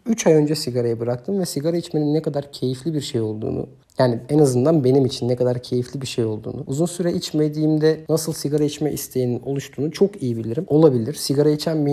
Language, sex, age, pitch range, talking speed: Turkish, male, 50-69, 130-165 Hz, 200 wpm